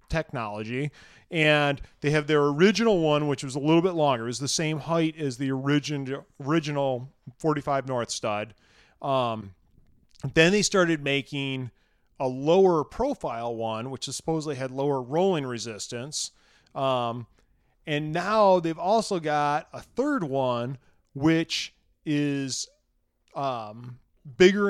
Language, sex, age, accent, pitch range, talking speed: English, male, 40-59, American, 125-155 Hz, 130 wpm